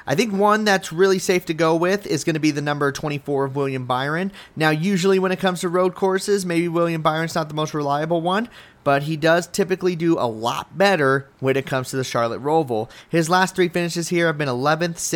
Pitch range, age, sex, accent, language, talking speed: 135-180 Hz, 30-49, male, American, English, 230 wpm